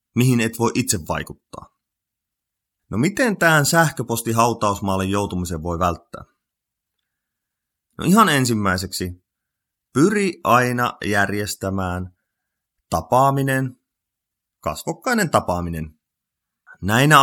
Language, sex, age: Finnish, male, 30-49